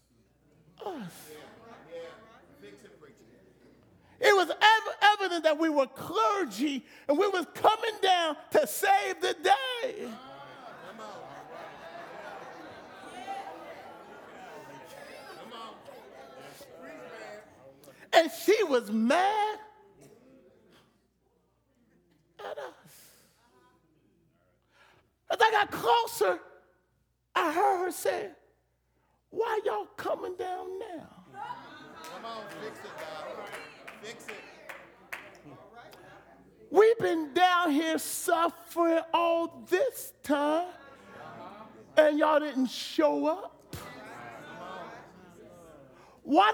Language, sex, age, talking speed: English, male, 50-69, 70 wpm